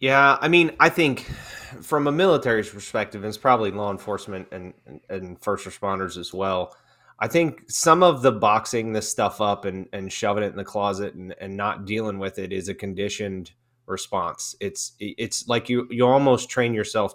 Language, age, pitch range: English, 30-49, 100-125 Hz